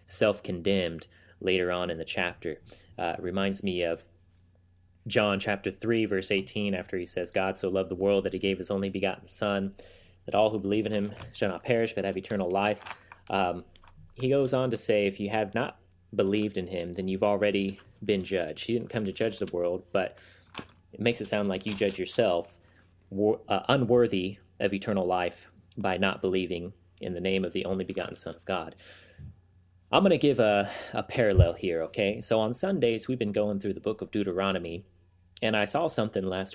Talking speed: 195 wpm